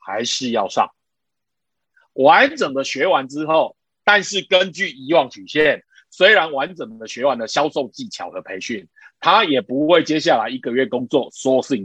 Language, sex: Chinese, male